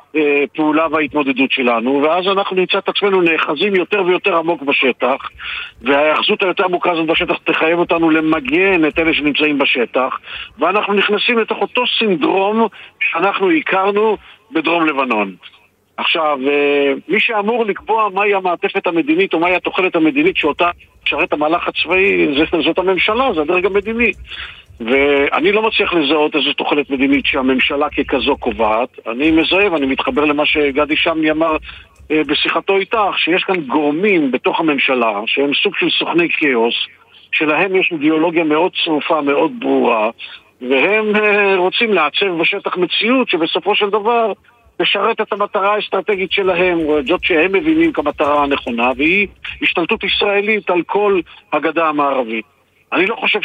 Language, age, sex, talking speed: Hebrew, 50-69, male, 135 wpm